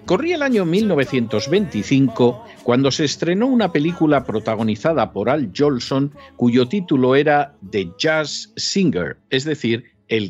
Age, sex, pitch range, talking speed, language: 50-69, male, 115-165 Hz, 130 wpm, Spanish